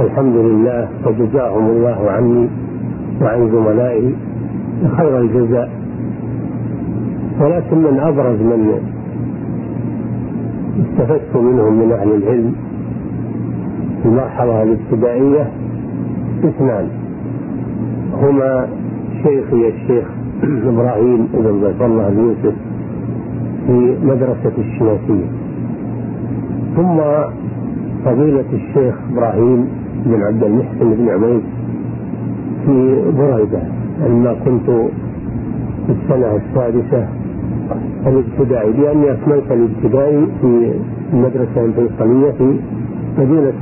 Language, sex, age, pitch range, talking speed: Arabic, male, 50-69, 110-130 Hz, 85 wpm